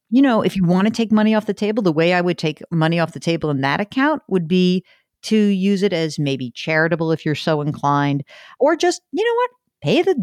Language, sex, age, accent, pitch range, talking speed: English, female, 50-69, American, 160-225 Hz, 245 wpm